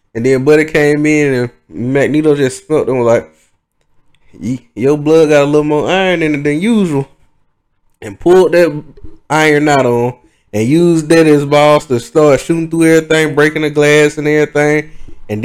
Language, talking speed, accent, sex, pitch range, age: English, 170 wpm, American, male, 135-175 Hz, 20-39